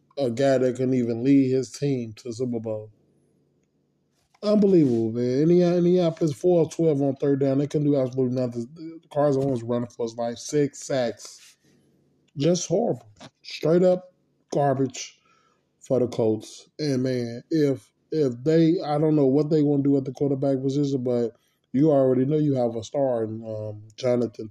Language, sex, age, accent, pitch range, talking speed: English, male, 20-39, American, 125-155 Hz, 175 wpm